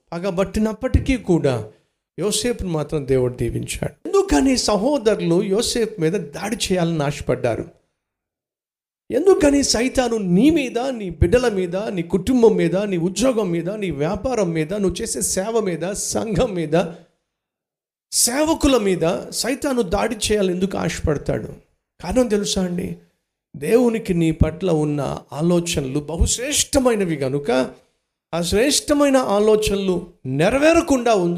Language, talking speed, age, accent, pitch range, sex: Telugu, 105 wpm, 50-69, native, 155-225 Hz, male